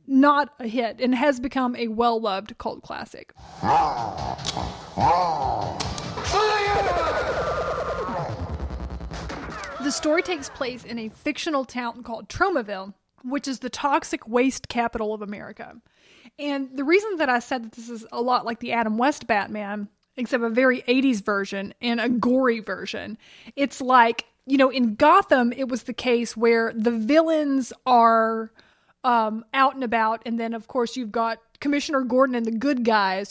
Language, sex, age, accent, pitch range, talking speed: English, female, 20-39, American, 225-275 Hz, 150 wpm